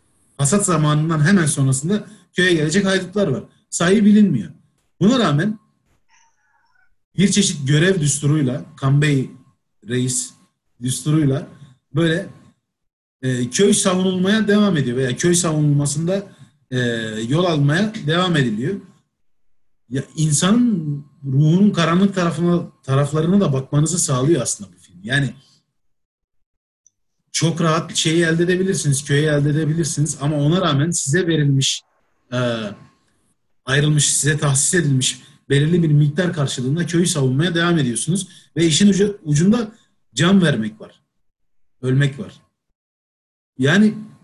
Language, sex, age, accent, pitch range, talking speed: Turkish, male, 40-59, native, 140-185 Hz, 110 wpm